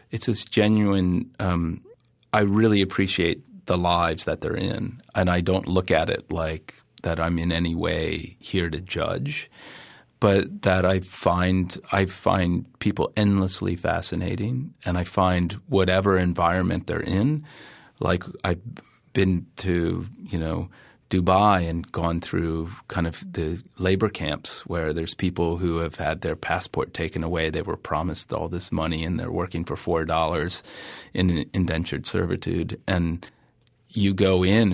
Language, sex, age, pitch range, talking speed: English, male, 30-49, 85-100 Hz, 150 wpm